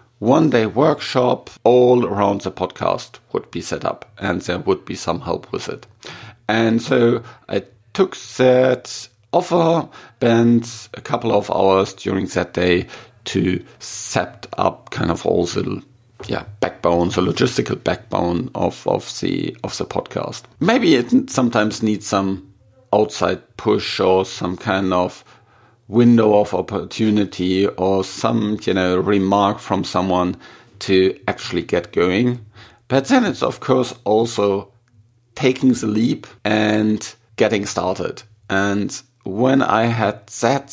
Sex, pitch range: male, 100-120 Hz